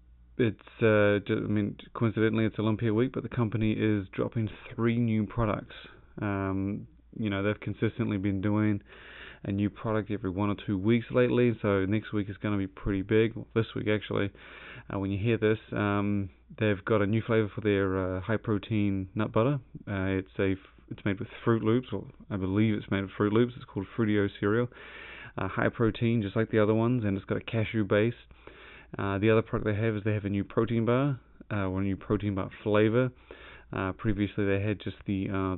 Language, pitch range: English, 100-110 Hz